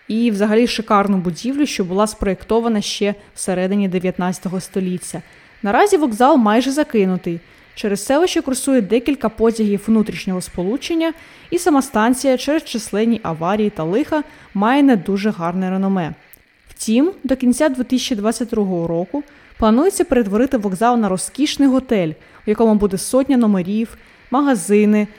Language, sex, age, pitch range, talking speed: Ukrainian, female, 20-39, 195-270 Hz, 125 wpm